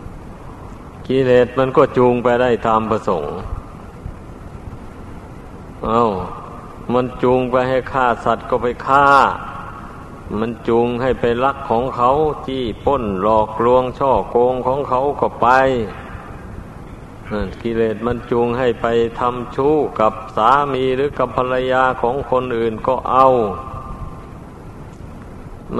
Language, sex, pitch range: Thai, male, 110-125 Hz